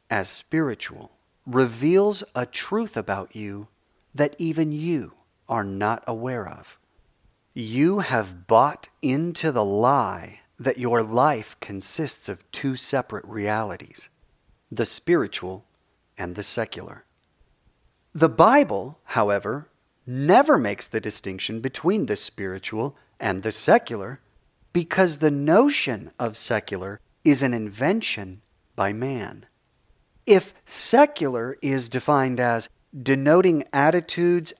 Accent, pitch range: American, 110-160 Hz